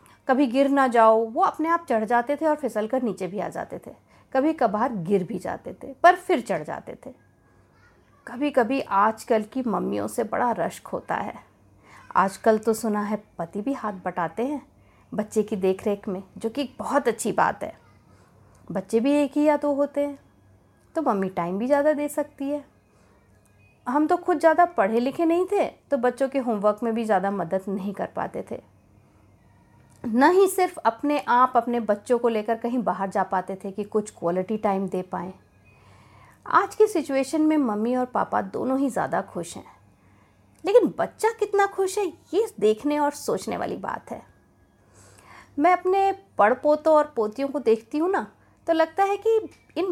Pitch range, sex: 205-300 Hz, female